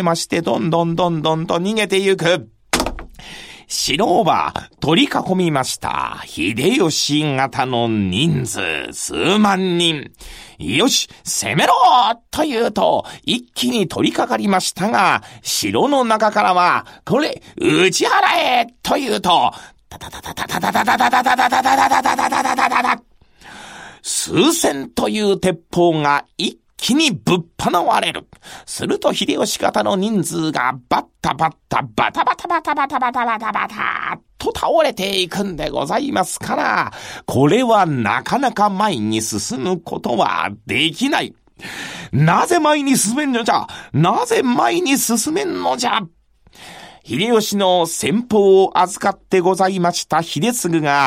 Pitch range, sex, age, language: 170-250 Hz, male, 40-59, Japanese